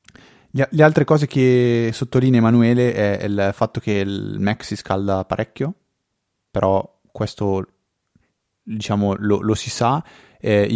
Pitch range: 100-120 Hz